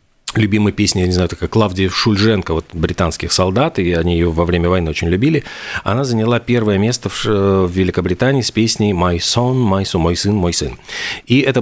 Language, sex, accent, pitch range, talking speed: Russian, male, native, 90-110 Hz, 185 wpm